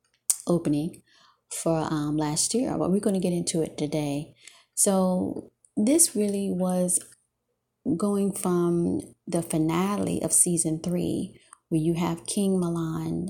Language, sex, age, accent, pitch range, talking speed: English, female, 30-49, American, 150-170 Hz, 130 wpm